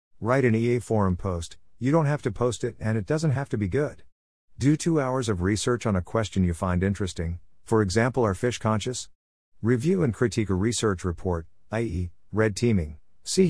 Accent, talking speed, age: American, 195 wpm, 50-69